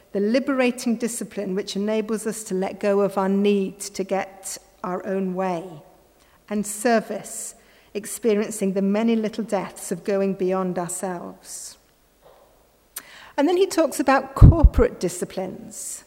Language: French